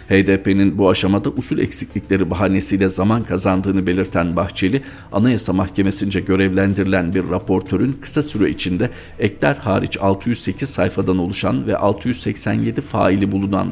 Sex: male